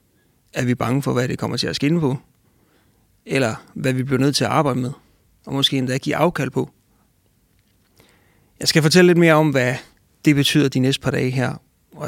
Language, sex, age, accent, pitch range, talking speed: English, male, 30-49, Danish, 130-150 Hz, 205 wpm